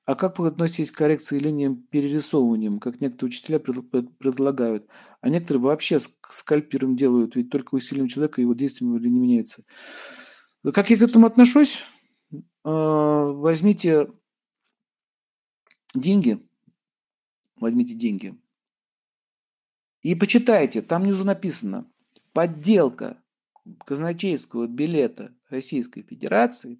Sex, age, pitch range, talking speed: male, 50-69, 140-230 Hz, 100 wpm